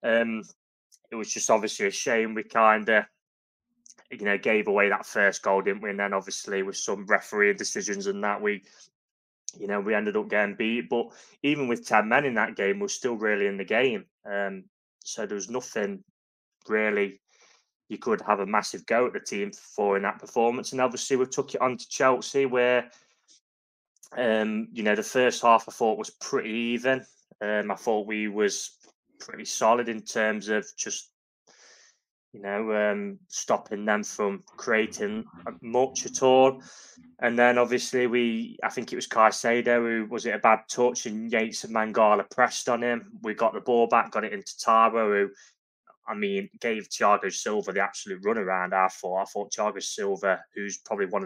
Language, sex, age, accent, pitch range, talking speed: English, male, 20-39, British, 105-125 Hz, 190 wpm